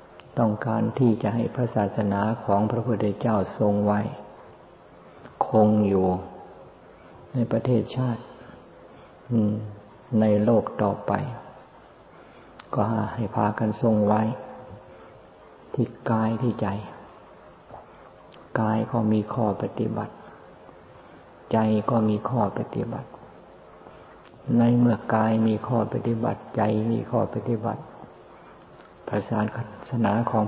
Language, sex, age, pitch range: Thai, male, 50-69, 95-115 Hz